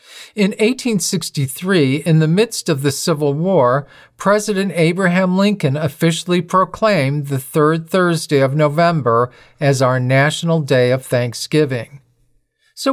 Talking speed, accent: 120 wpm, American